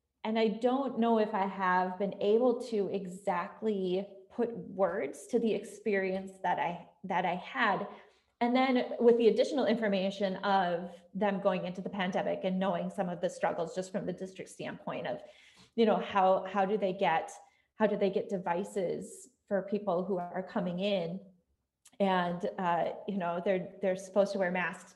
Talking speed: 175 wpm